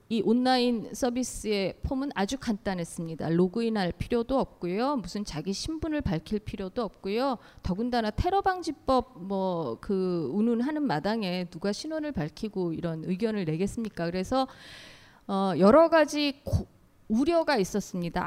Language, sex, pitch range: Korean, female, 185-260 Hz